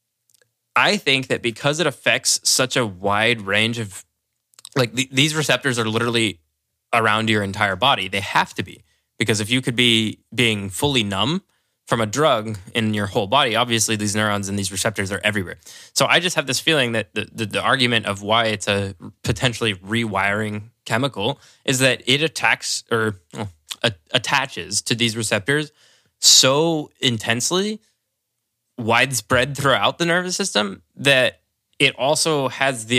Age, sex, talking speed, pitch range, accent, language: 10-29, male, 155 wpm, 105-130 Hz, American, English